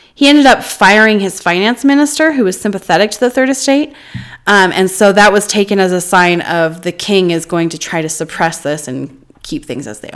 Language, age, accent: English, 20-39, American